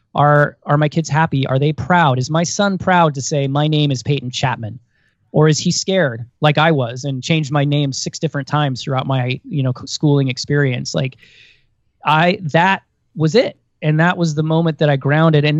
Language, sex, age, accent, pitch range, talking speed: English, male, 20-39, American, 135-160 Hz, 205 wpm